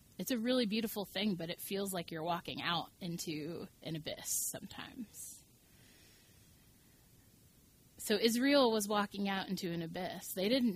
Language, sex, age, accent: English, female, 20-39, American